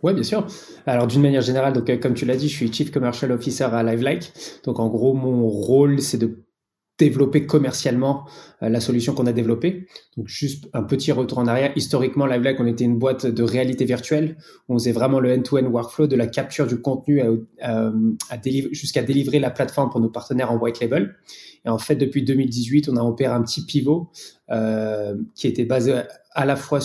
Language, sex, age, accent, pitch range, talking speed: French, male, 20-39, French, 120-140 Hz, 205 wpm